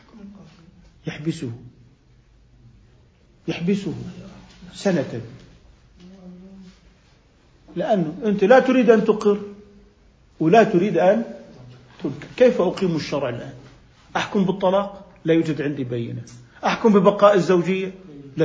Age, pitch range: 50-69, 145-205 Hz